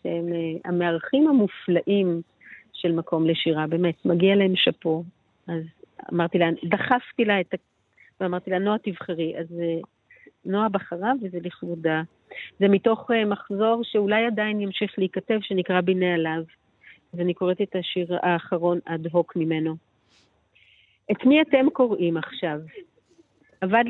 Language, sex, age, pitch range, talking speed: Hebrew, female, 40-59, 170-215 Hz, 125 wpm